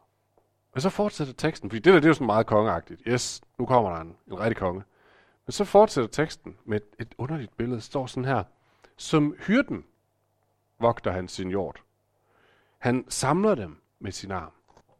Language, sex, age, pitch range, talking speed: Danish, male, 40-59, 110-150 Hz, 180 wpm